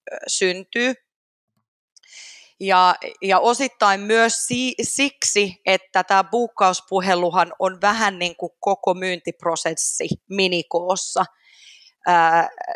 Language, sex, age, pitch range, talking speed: Finnish, female, 30-49, 175-220 Hz, 85 wpm